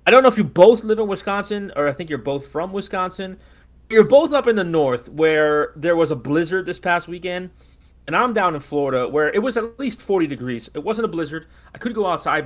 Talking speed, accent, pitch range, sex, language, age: 240 wpm, American, 130-175 Hz, male, English, 30-49